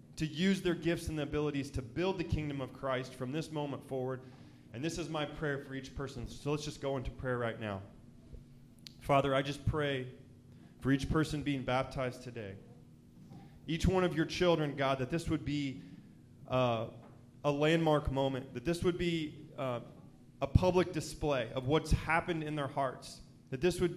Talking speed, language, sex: 185 wpm, English, male